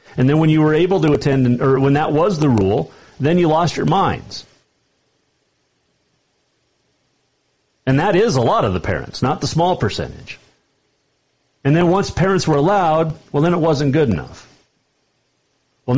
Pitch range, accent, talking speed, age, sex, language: 120-160 Hz, American, 165 wpm, 40-59, male, English